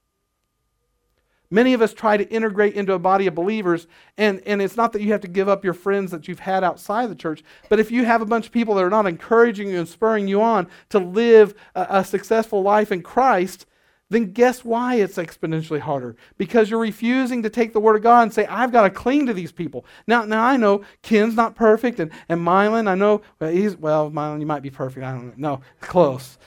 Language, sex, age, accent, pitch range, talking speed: English, male, 40-59, American, 185-225 Hz, 230 wpm